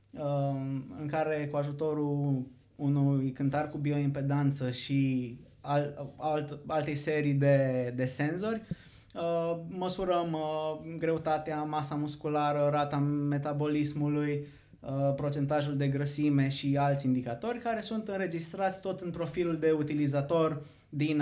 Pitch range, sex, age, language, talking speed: 135-155 Hz, male, 20-39, Romanian, 105 wpm